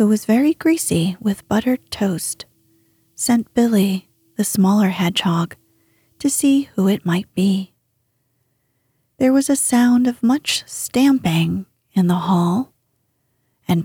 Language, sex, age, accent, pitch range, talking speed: English, female, 40-59, American, 135-220 Hz, 125 wpm